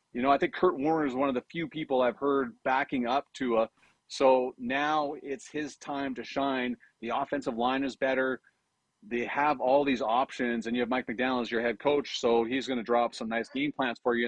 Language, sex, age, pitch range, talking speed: English, male, 30-49, 125-150 Hz, 230 wpm